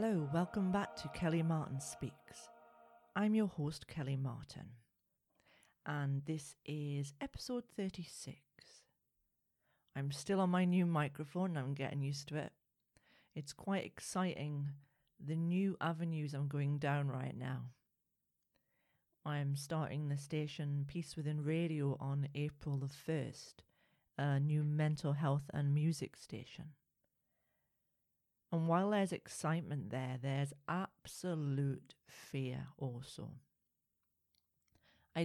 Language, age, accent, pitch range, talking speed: English, 40-59, British, 135-165 Hz, 115 wpm